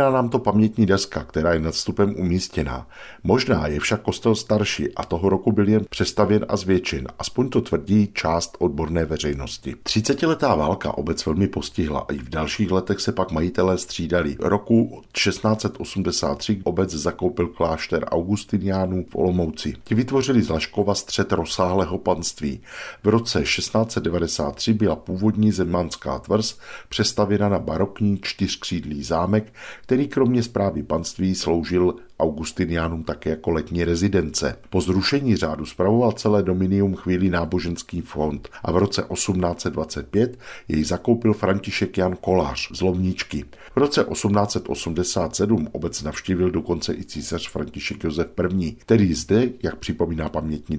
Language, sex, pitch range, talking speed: Czech, male, 85-105 Hz, 135 wpm